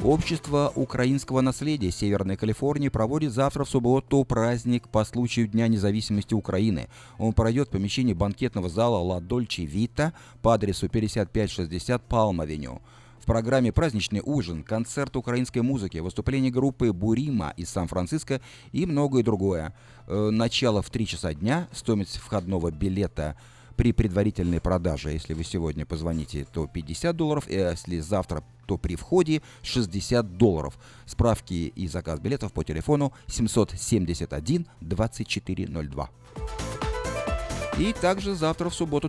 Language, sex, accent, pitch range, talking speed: Russian, male, native, 95-125 Hz, 120 wpm